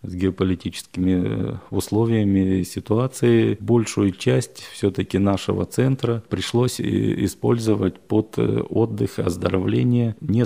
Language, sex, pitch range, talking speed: Russian, male, 95-110 Hz, 90 wpm